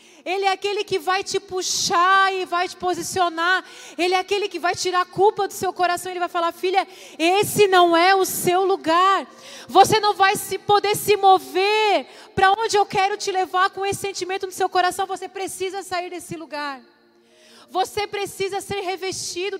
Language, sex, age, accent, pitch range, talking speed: Portuguese, female, 30-49, Brazilian, 365-415 Hz, 180 wpm